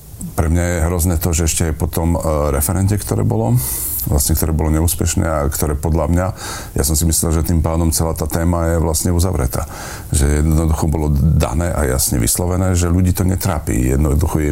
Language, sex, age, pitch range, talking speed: Slovak, male, 50-69, 75-90 Hz, 195 wpm